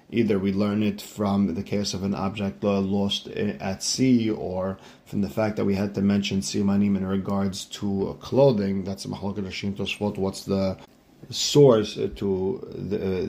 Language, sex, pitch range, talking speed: English, male, 100-115 Hz, 160 wpm